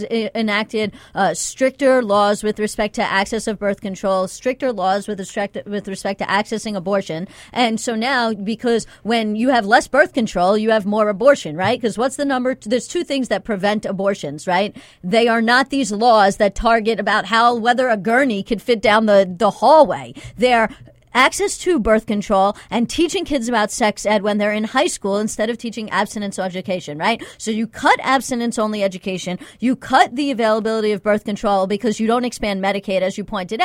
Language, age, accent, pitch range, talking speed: English, 40-59, American, 205-245 Hz, 190 wpm